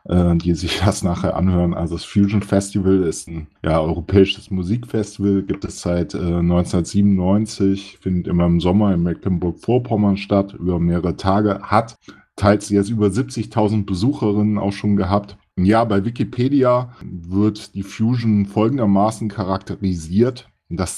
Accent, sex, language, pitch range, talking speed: German, male, German, 90-105 Hz, 130 wpm